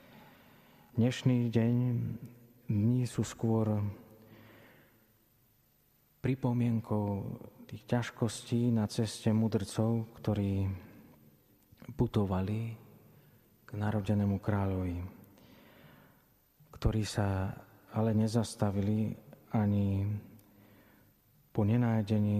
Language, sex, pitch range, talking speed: Slovak, male, 105-115 Hz, 60 wpm